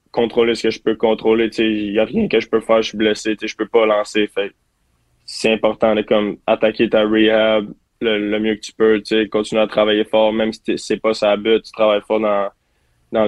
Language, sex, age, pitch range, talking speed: French, male, 20-39, 105-115 Hz, 225 wpm